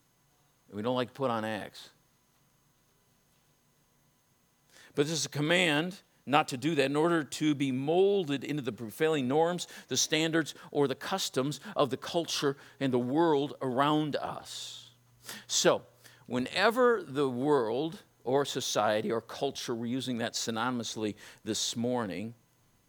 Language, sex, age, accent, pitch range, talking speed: English, male, 50-69, American, 125-170 Hz, 135 wpm